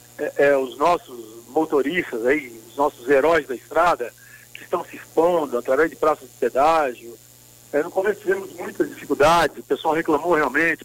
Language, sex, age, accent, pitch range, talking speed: Portuguese, male, 60-79, Brazilian, 140-210 Hz, 165 wpm